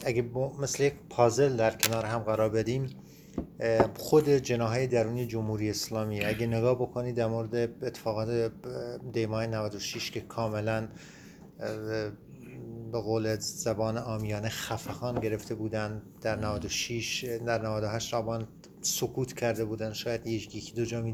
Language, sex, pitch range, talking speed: Persian, male, 110-125 Hz, 130 wpm